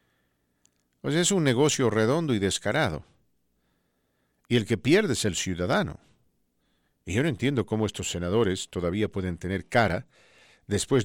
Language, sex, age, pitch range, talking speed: English, male, 50-69, 100-130 Hz, 140 wpm